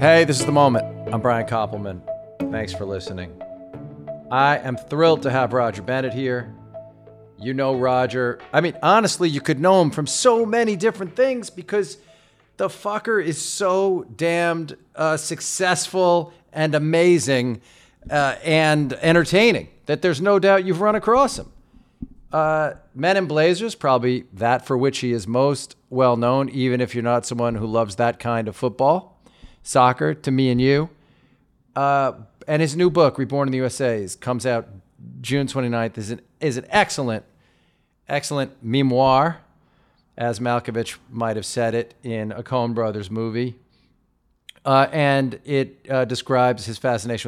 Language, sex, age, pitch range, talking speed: English, male, 40-59, 120-155 Hz, 155 wpm